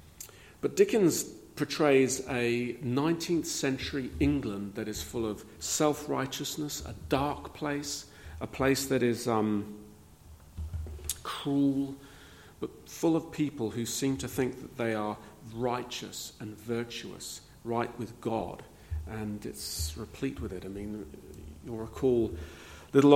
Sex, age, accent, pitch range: male, 40-59, British, 105-130 Hz